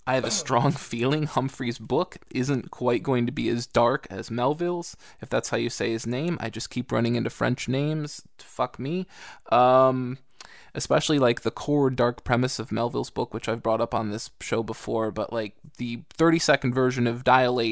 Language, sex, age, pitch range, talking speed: English, male, 20-39, 115-130 Hz, 195 wpm